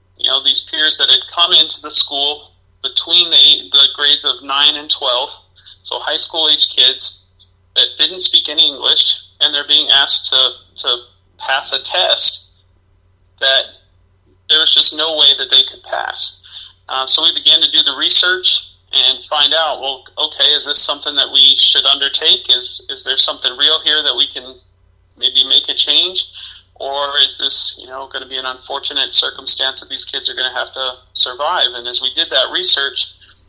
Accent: American